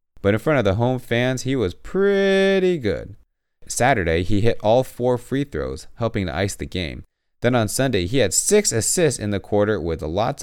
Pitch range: 90-130 Hz